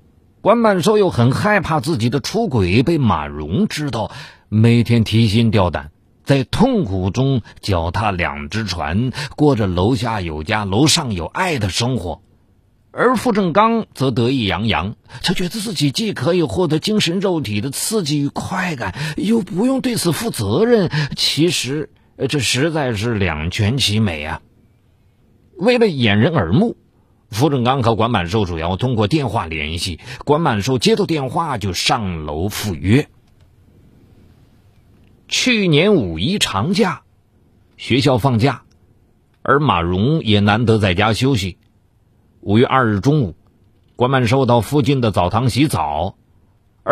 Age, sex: 50-69, male